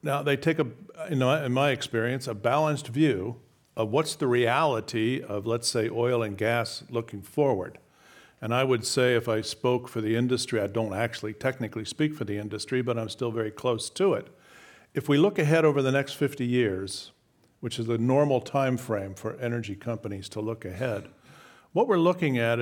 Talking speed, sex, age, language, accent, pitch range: 190 wpm, male, 50-69, English, American, 115-150 Hz